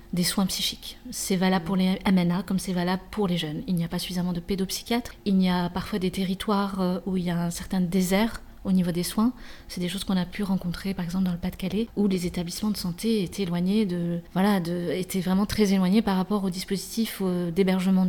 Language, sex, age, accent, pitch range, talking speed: French, female, 30-49, French, 185-215 Hz, 230 wpm